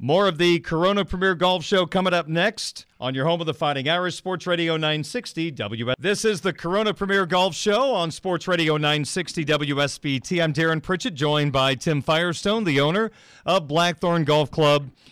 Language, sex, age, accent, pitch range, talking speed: English, male, 40-59, American, 145-185 Hz, 185 wpm